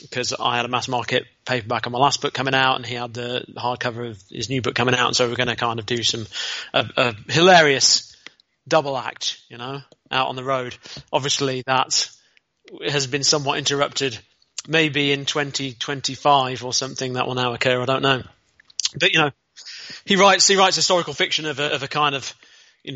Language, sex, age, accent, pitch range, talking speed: English, male, 30-49, British, 125-150 Hz, 205 wpm